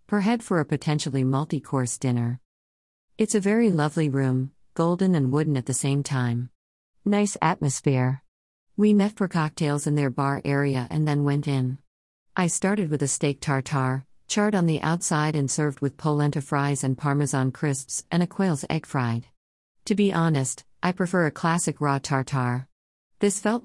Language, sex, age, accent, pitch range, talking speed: English, female, 50-69, American, 130-160 Hz, 170 wpm